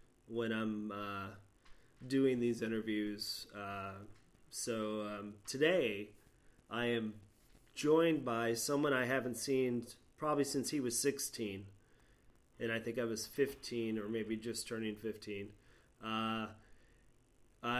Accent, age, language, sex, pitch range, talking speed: American, 30-49, English, male, 115-130 Hz, 120 wpm